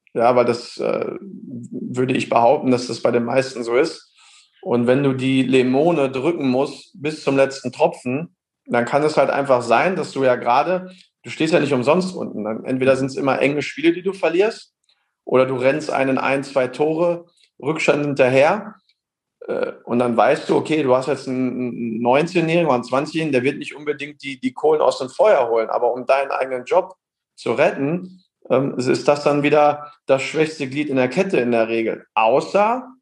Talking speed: 195 wpm